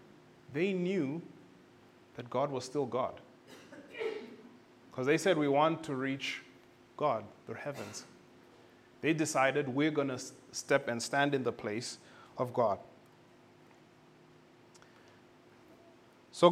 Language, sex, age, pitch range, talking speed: English, male, 30-49, 120-155 Hz, 115 wpm